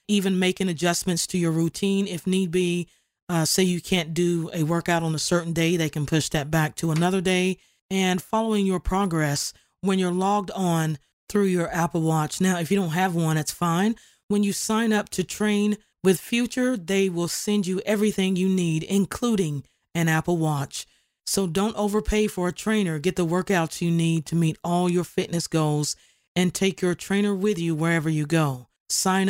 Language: English